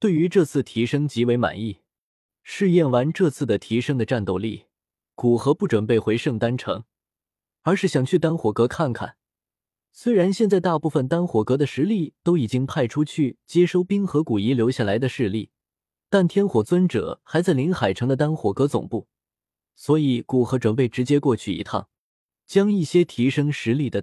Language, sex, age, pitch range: Chinese, male, 20-39, 115-160 Hz